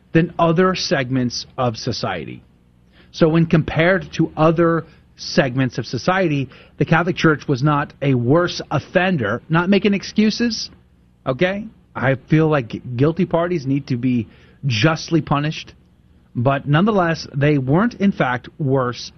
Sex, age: male, 30-49